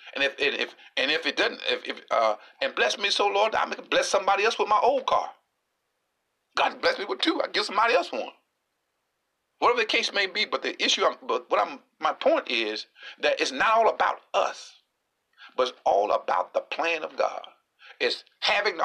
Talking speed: 215 wpm